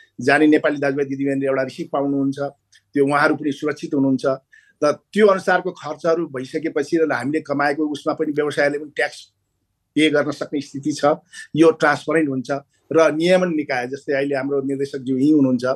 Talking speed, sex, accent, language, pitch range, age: 120 wpm, male, Indian, English, 135-160 Hz, 50-69